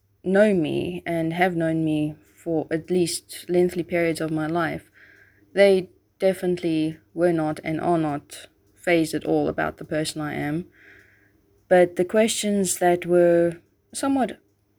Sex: female